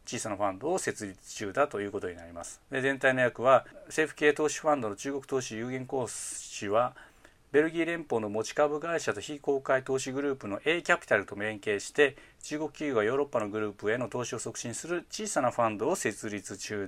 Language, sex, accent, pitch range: Japanese, male, native, 115-150 Hz